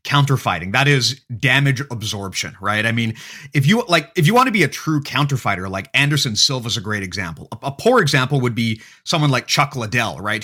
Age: 30-49